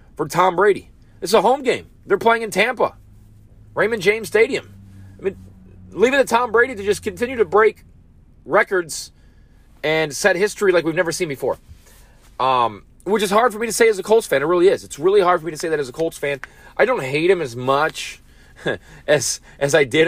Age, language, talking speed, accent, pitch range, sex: 30-49, English, 215 wpm, American, 105-170 Hz, male